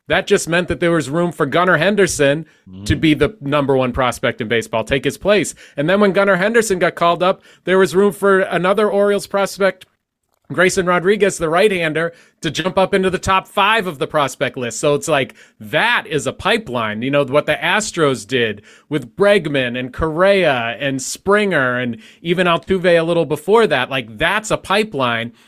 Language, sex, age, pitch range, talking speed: English, male, 30-49, 145-185 Hz, 190 wpm